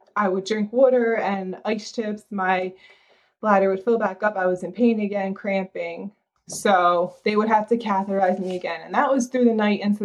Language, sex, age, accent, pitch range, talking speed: English, female, 20-39, American, 180-210 Hz, 205 wpm